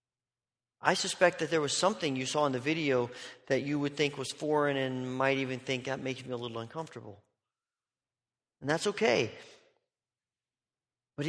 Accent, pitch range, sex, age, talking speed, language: American, 125-160 Hz, male, 40-59, 165 wpm, English